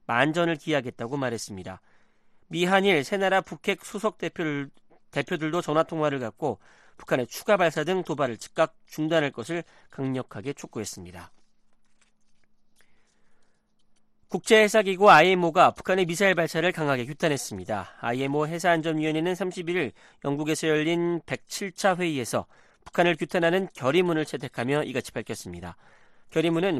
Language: Korean